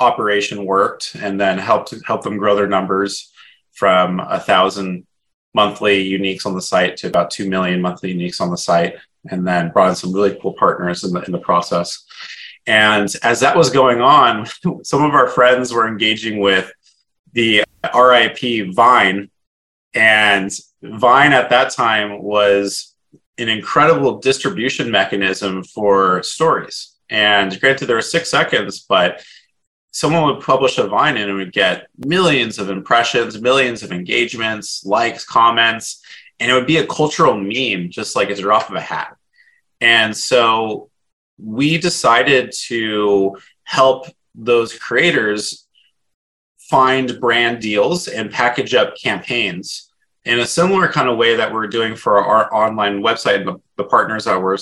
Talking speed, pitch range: 150 wpm, 95-120 Hz